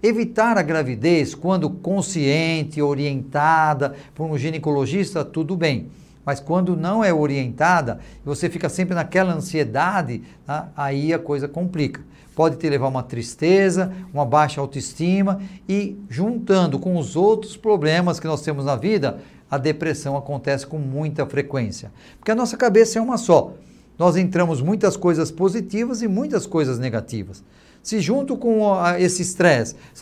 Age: 50-69